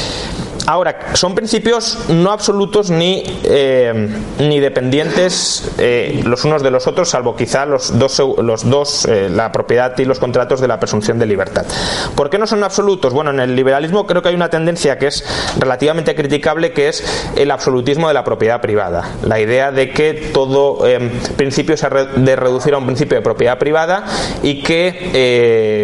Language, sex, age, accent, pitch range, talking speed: Spanish, male, 20-39, Spanish, 120-170 Hz, 180 wpm